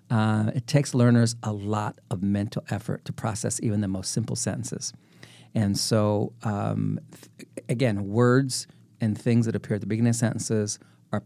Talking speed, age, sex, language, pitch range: 170 wpm, 40-59, male, English, 100-125 Hz